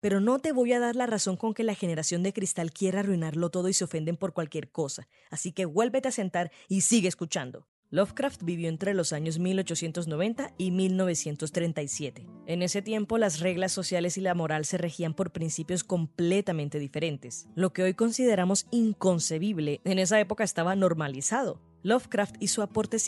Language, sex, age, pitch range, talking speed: English, female, 20-39, 160-205 Hz, 175 wpm